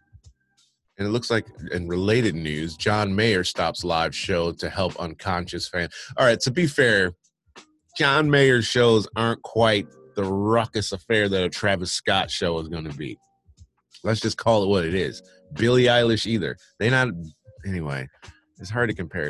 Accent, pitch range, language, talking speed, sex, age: American, 85-115 Hz, English, 170 wpm, male, 30-49